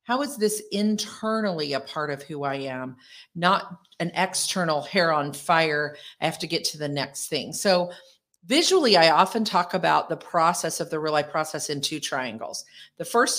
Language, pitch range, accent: English, 150-195 Hz, American